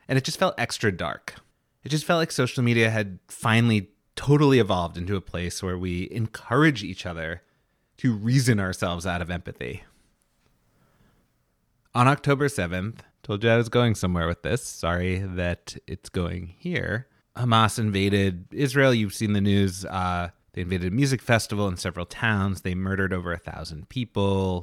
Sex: male